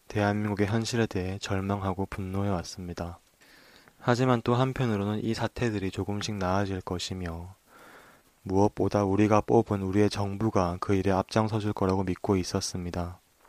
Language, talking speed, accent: English, 105 wpm, Korean